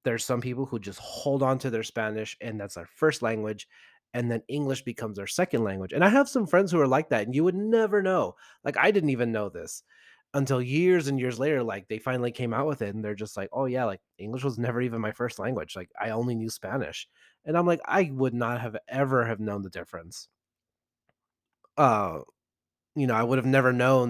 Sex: male